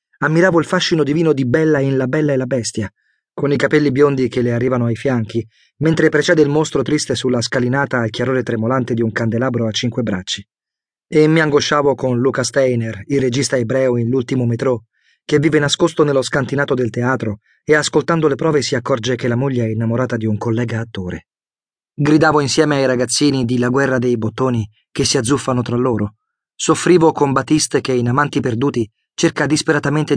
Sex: male